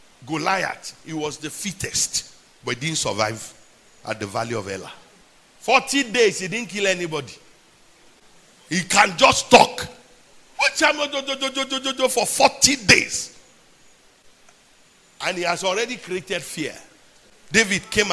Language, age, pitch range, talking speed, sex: English, 50-69, 145-230 Hz, 115 wpm, male